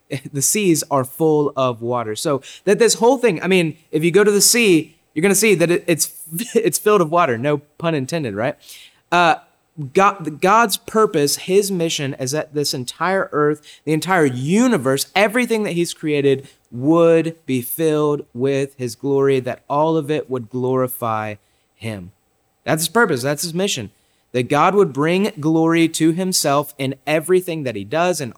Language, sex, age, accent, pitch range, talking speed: English, male, 30-49, American, 140-200 Hz, 175 wpm